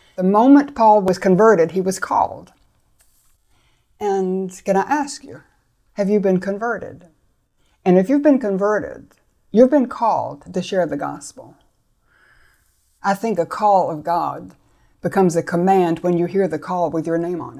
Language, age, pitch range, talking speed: English, 60-79, 170-210 Hz, 160 wpm